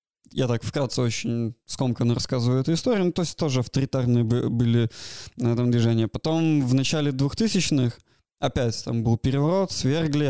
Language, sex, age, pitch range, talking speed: Russian, male, 20-39, 120-145 Hz, 145 wpm